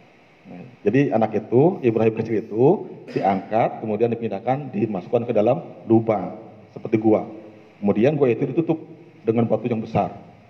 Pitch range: 110-155 Hz